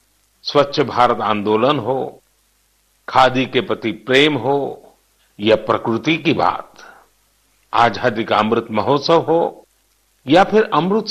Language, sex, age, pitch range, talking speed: Hindi, male, 50-69, 110-170 Hz, 110 wpm